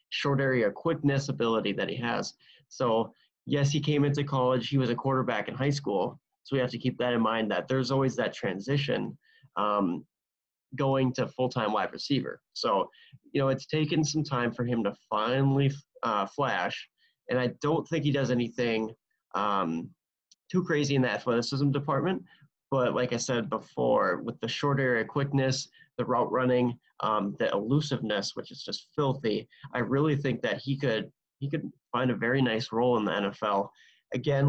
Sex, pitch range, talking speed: male, 120-145 Hz, 180 wpm